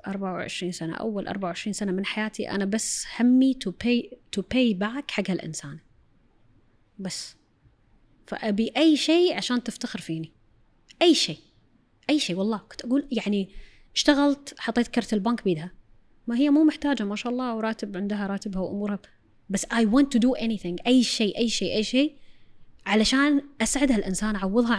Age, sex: 20-39, female